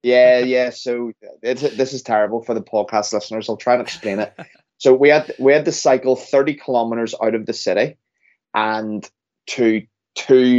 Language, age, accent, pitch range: English, 20-39, British, 110-130 Hz